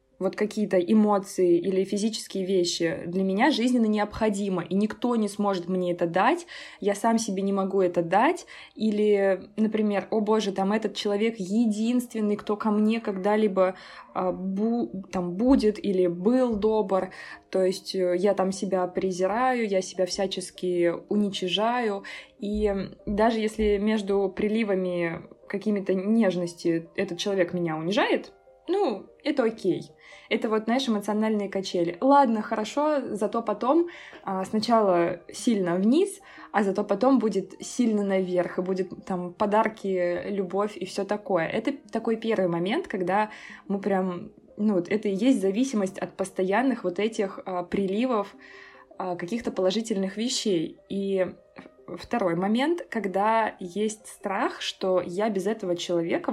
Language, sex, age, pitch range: Russian, female, 20-39, 185-220 Hz